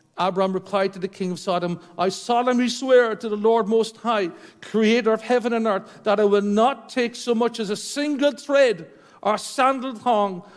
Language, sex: English, male